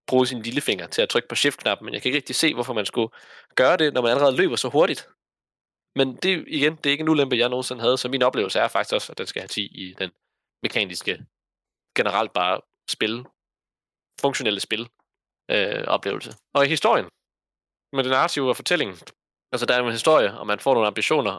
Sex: male